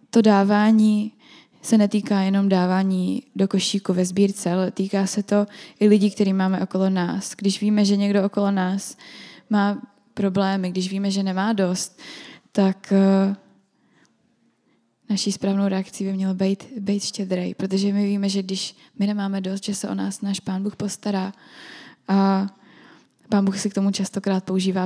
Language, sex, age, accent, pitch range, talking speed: Czech, female, 20-39, native, 190-210 Hz, 160 wpm